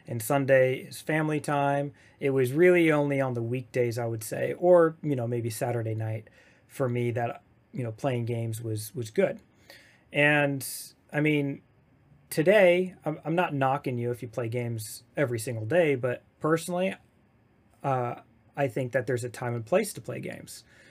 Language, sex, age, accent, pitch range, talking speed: English, male, 30-49, American, 120-150 Hz, 175 wpm